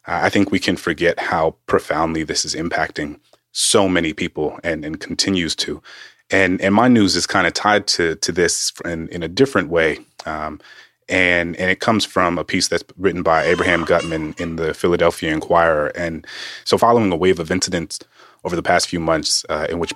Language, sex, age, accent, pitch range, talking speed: English, male, 30-49, American, 85-100 Hz, 195 wpm